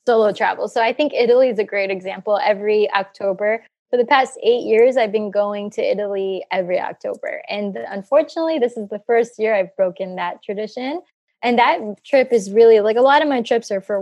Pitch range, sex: 200-250 Hz, female